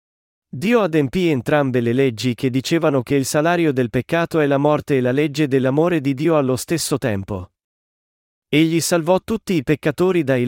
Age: 40-59